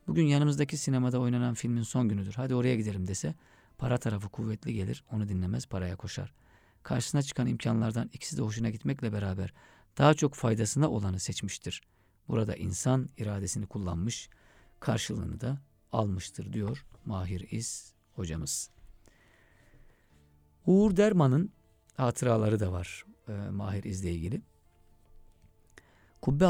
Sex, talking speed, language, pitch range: male, 120 wpm, Turkish, 90-120 Hz